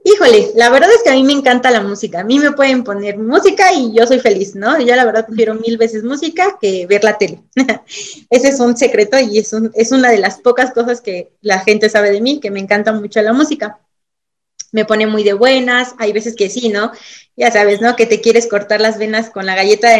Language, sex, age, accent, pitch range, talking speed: Spanish, female, 20-39, Mexican, 215-265 Hz, 245 wpm